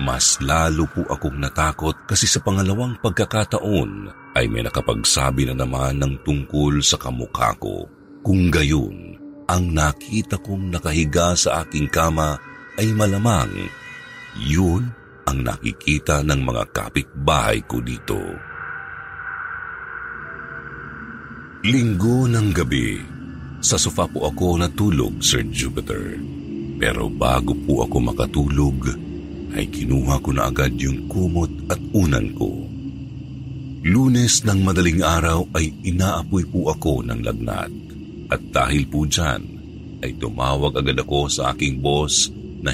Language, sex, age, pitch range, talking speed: Filipino, male, 50-69, 70-100 Hz, 120 wpm